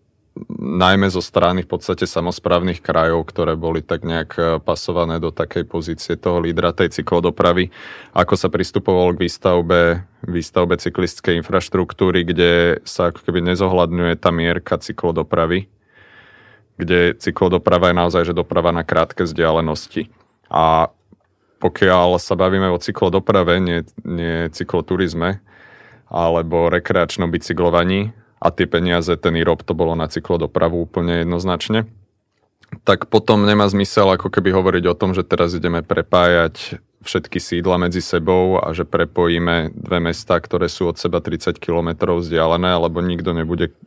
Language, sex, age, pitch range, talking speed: Slovak, male, 30-49, 85-95 Hz, 135 wpm